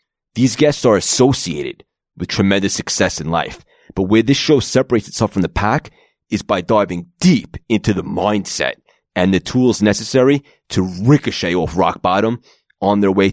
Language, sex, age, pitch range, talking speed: English, male, 30-49, 90-120 Hz, 165 wpm